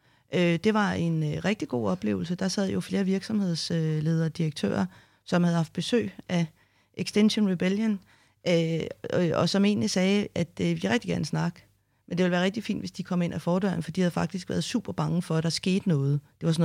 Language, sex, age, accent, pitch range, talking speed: Danish, female, 30-49, native, 155-195 Hz, 200 wpm